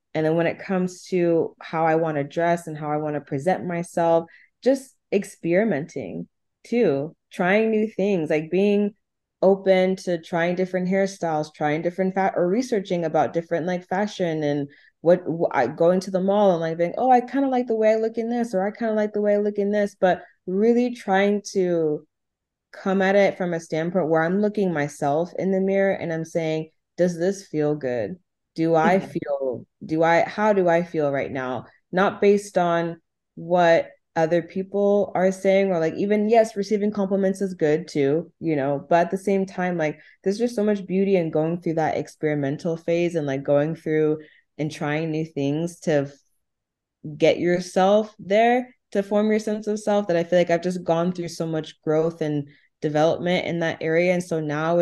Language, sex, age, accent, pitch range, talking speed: English, female, 20-39, American, 160-195 Hz, 195 wpm